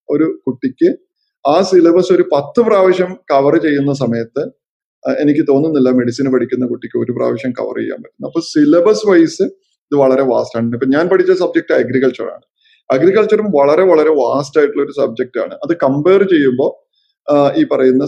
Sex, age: male, 30-49